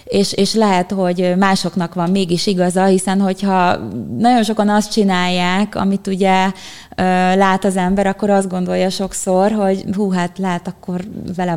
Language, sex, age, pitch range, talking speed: Hungarian, female, 20-39, 180-205 Hz, 150 wpm